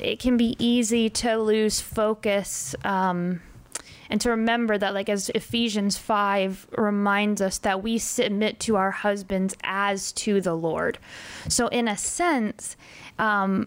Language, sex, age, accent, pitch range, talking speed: English, female, 20-39, American, 195-225 Hz, 140 wpm